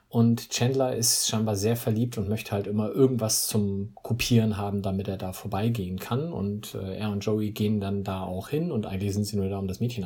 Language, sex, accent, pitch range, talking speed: German, male, German, 105-130 Hz, 225 wpm